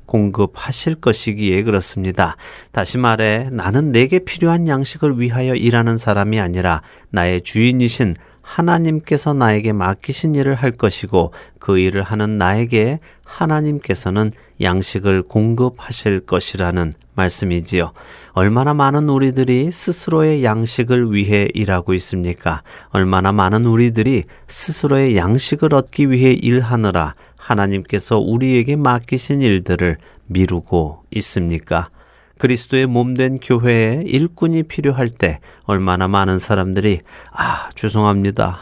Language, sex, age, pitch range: Korean, male, 30-49, 95-130 Hz